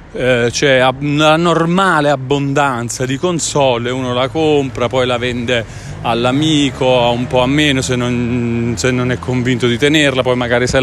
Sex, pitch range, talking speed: male, 125-150 Hz, 155 wpm